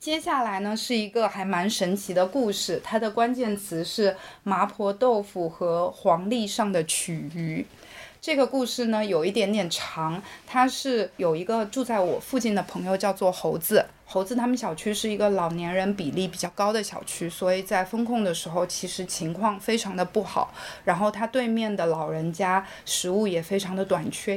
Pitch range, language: 180-220 Hz, Chinese